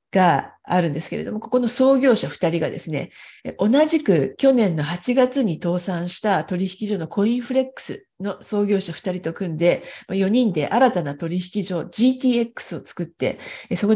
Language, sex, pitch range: Japanese, female, 175-225 Hz